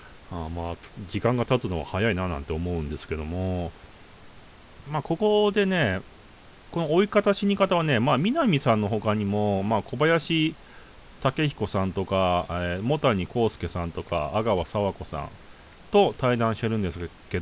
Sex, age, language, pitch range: male, 30-49, Japanese, 90-135 Hz